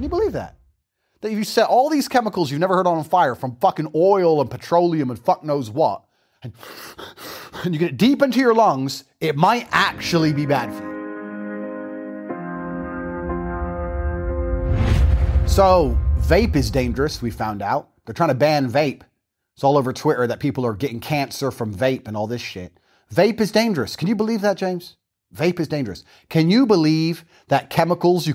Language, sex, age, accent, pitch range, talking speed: English, male, 30-49, American, 115-185 Hz, 180 wpm